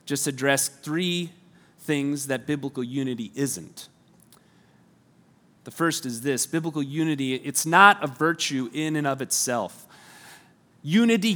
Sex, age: male, 30-49